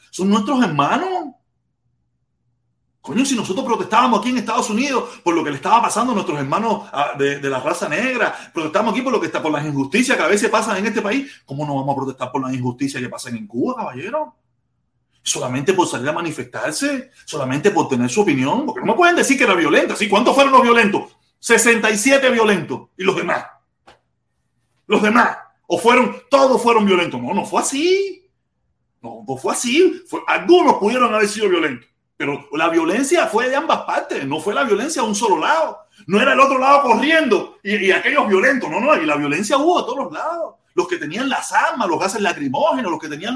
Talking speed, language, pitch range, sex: 205 wpm, Spanish, 195-310 Hz, male